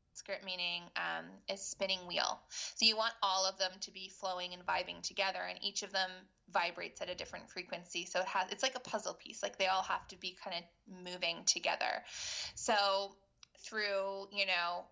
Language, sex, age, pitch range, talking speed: English, female, 20-39, 185-210 Hz, 195 wpm